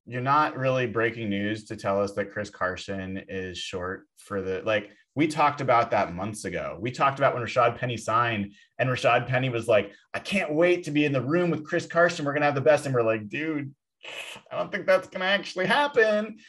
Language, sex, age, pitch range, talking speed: English, male, 20-39, 115-150 Hz, 220 wpm